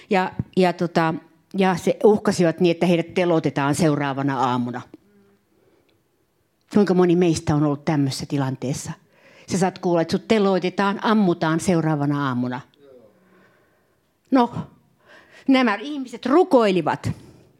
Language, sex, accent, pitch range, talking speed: Finnish, female, native, 170-270 Hz, 105 wpm